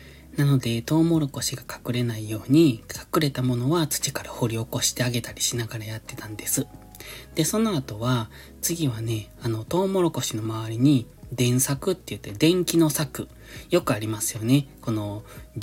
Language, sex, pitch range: Japanese, male, 115-150 Hz